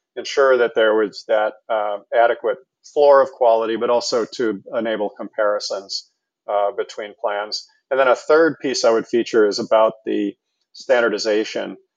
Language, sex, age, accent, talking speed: English, male, 40-59, American, 150 wpm